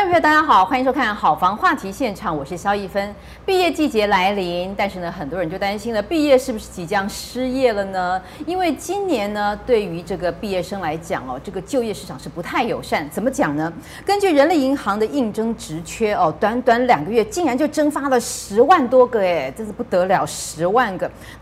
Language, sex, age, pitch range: Chinese, female, 30-49, 185-260 Hz